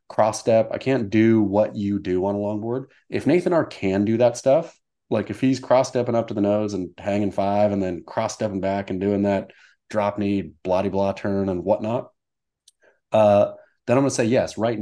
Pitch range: 100-115 Hz